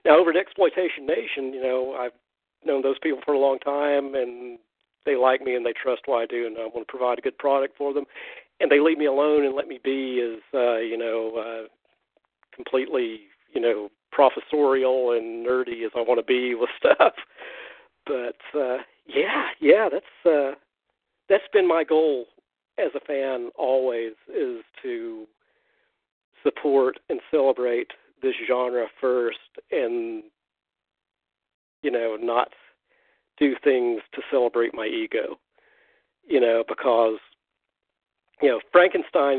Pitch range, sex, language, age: 120-160 Hz, male, English, 50-69